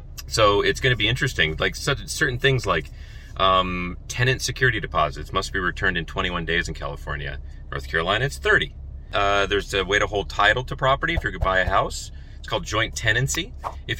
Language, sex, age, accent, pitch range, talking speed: English, male, 30-49, American, 80-125 Hz, 200 wpm